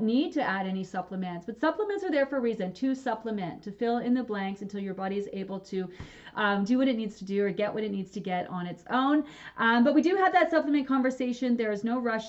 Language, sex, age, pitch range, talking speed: English, female, 30-49, 195-240 Hz, 265 wpm